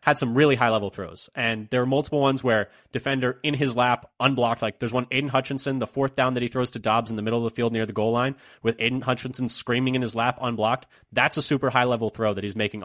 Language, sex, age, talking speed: English, male, 20-39, 265 wpm